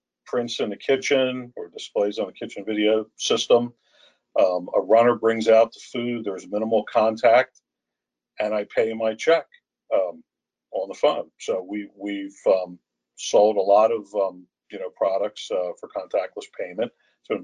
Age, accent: 50-69, American